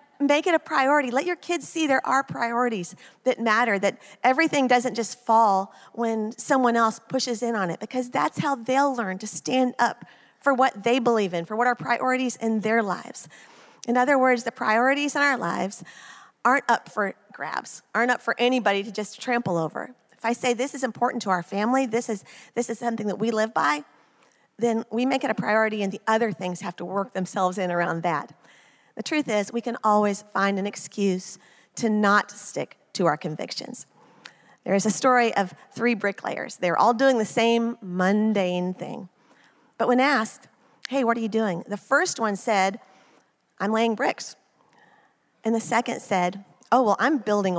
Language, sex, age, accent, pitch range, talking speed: English, female, 40-59, American, 200-250 Hz, 190 wpm